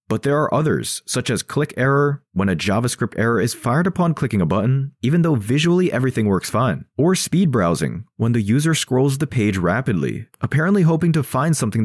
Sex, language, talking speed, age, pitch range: male, English, 195 wpm, 30-49, 110-160 Hz